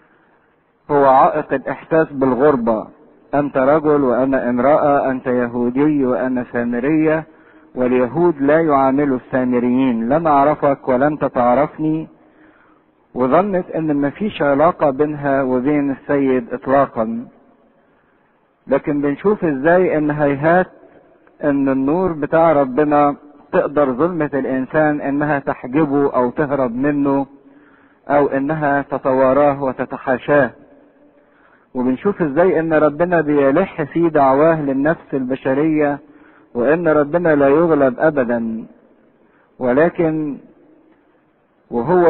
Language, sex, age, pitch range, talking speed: English, male, 50-69, 135-160 Hz, 95 wpm